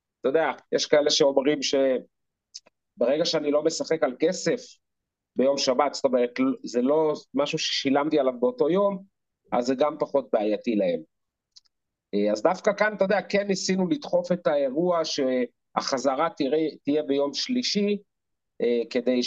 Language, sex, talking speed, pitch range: Hebrew, male, 135 wpm, 130-170 Hz